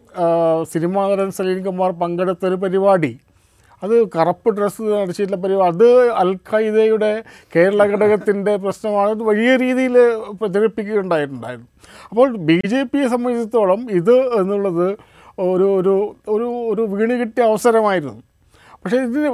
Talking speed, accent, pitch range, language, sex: 110 wpm, native, 165-220 Hz, Malayalam, male